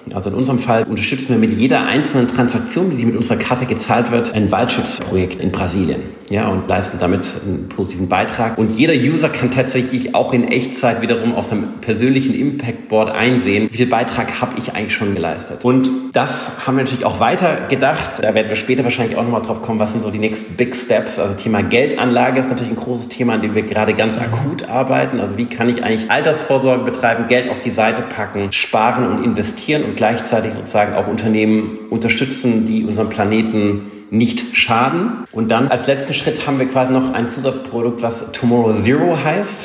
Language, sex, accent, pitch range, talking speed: German, male, German, 110-125 Hz, 195 wpm